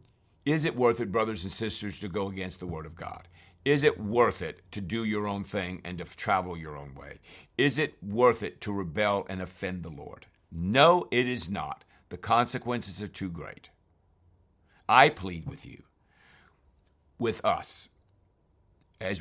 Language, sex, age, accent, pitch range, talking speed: English, male, 60-79, American, 85-105 Hz, 170 wpm